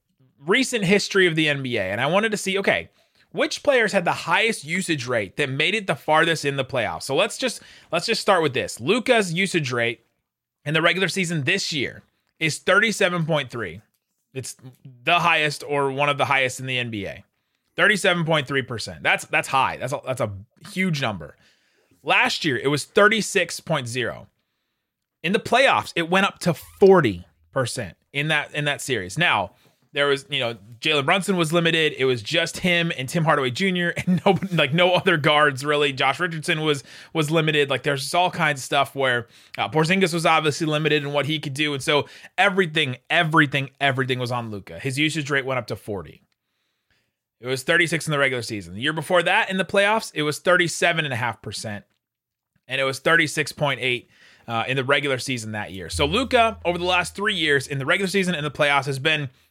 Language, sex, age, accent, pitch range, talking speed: English, male, 30-49, American, 130-175 Hz, 190 wpm